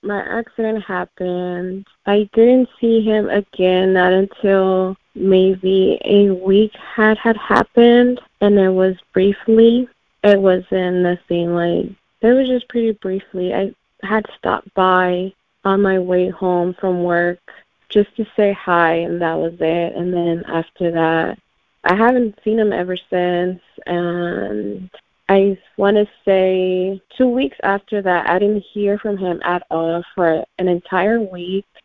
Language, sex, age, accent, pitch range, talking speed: English, female, 20-39, American, 180-205 Hz, 145 wpm